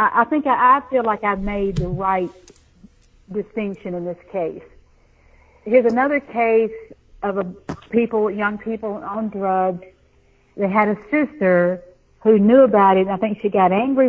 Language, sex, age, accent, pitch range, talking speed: English, female, 50-69, American, 175-210 Hz, 160 wpm